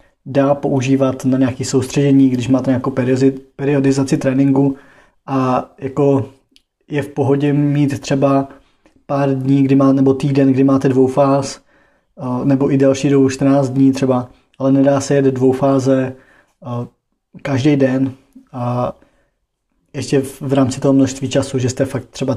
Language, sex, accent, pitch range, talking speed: Czech, male, native, 130-140 Hz, 140 wpm